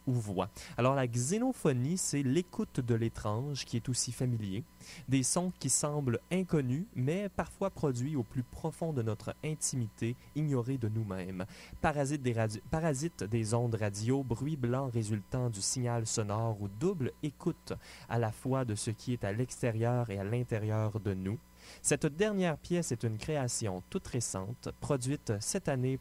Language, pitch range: French, 105-135 Hz